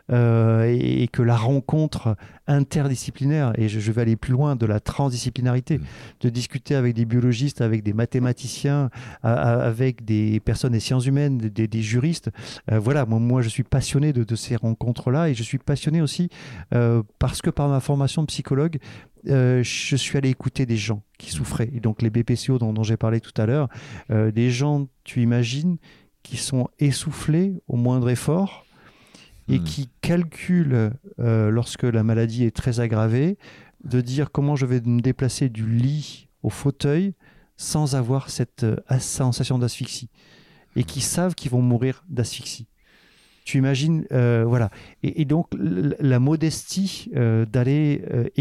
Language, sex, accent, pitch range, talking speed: French, male, French, 120-145 Hz, 175 wpm